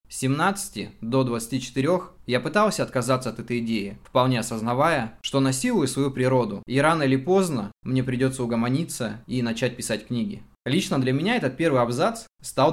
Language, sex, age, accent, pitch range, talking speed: Russian, male, 20-39, native, 115-140 Hz, 160 wpm